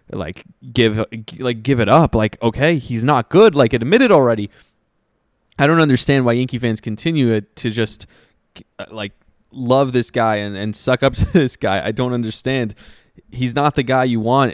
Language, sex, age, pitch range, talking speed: English, male, 20-39, 105-130 Hz, 180 wpm